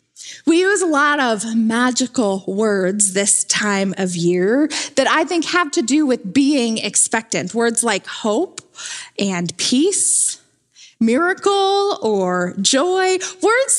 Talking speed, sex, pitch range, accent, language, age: 125 wpm, female, 225-340 Hz, American, English, 20-39